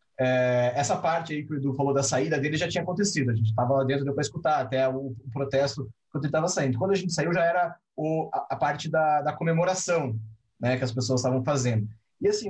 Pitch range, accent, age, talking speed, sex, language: 125-165 Hz, Brazilian, 30-49, 240 wpm, male, English